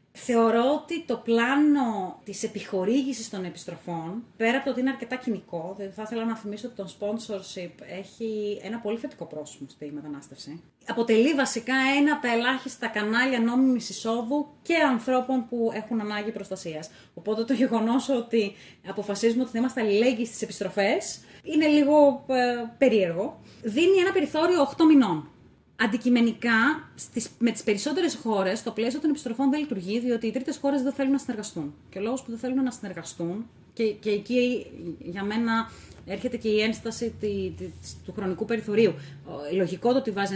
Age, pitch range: 30-49, 195-255 Hz